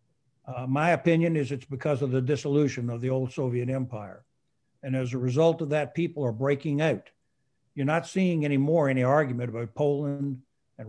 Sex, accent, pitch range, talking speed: male, American, 125-150 Hz, 180 wpm